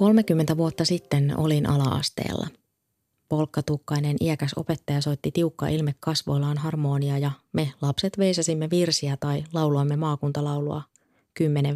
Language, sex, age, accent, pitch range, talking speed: Finnish, female, 20-39, native, 145-165 Hz, 115 wpm